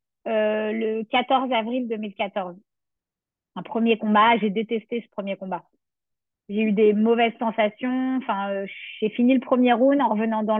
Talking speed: 160 wpm